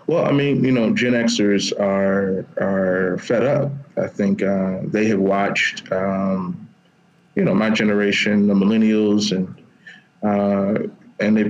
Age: 30-49